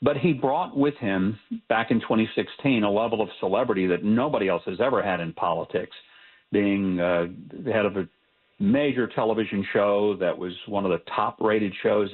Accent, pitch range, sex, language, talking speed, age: American, 100-140 Hz, male, English, 175 wpm, 50-69